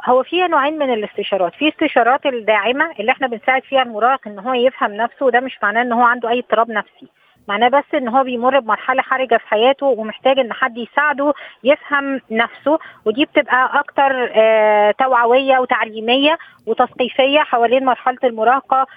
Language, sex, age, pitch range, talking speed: Arabic, female, 20-39, 225-265 Hz, 160 wpm